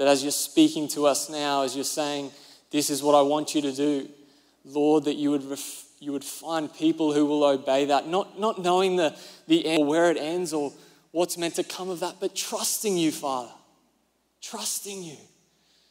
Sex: male